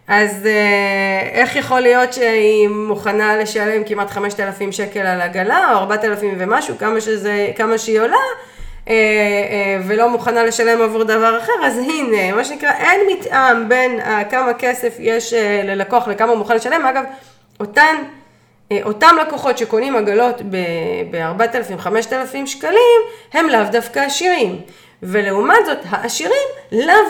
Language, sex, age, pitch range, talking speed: Hebrew, female, 30-49, 210-285 Hz, 120 wpm